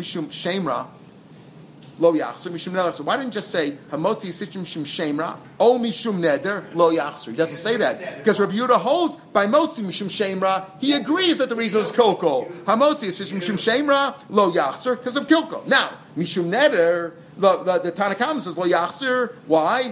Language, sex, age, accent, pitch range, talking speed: English, male, 40-59, American, 165-215 Hz, 165 wpm